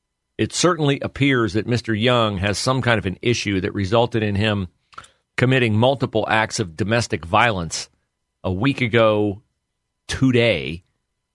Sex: male